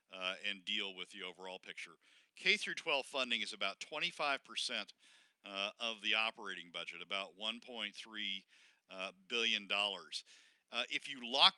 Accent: American